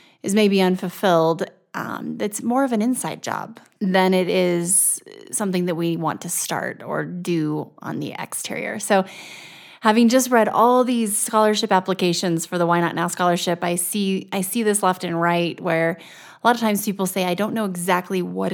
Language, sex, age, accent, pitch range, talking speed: English, female, 30-49, American, 175-215 Hz, 190 wpm